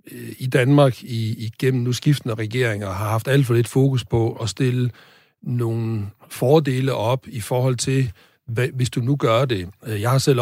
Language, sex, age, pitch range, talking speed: Danish, male, 60-79, 110-135 Hz, 175 wpm